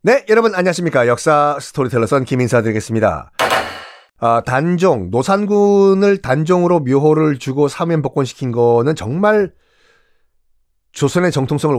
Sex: male